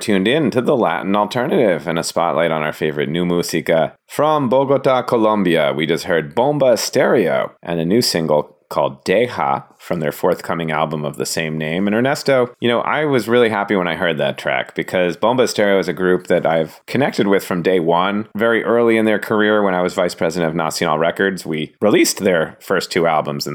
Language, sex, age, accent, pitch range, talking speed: English, male, 30-49, American, 85-115 Hz, 210 wpm